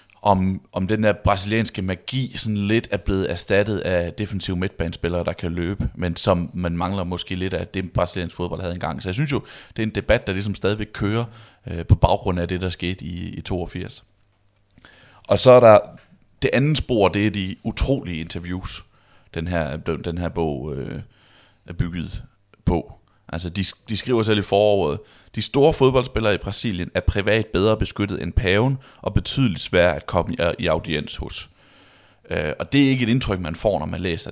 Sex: male